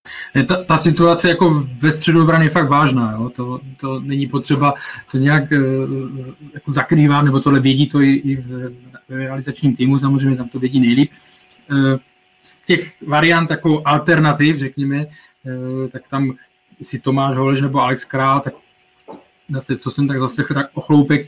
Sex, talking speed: male, 165 wpm